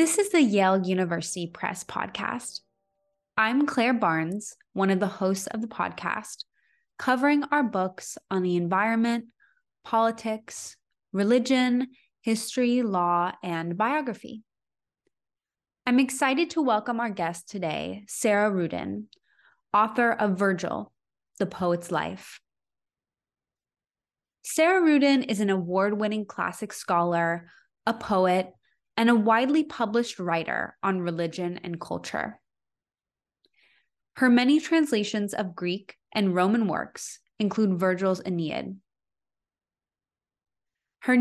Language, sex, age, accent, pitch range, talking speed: English, female, 20-39, American, 180-245 Hz, 110 wpm